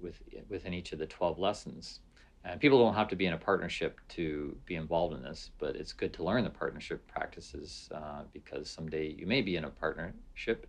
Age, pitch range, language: 40-59, 80-105 Hz, English